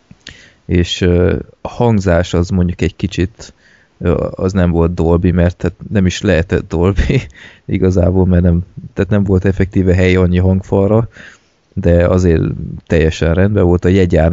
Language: Hungarian